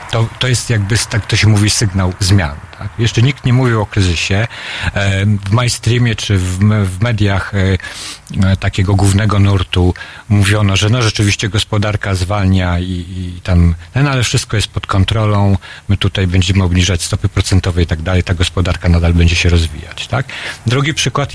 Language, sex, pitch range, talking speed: Polish, male, 90-110 Hz, 165 wpm